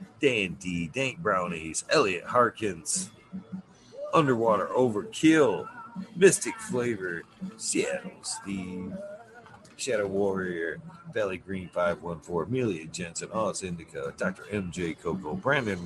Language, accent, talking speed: English, American, 90 wpm